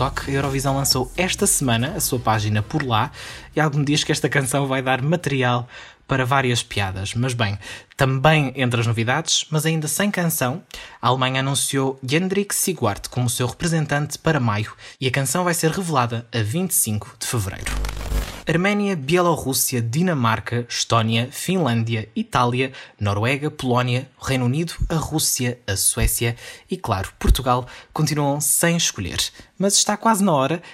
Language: Portuguese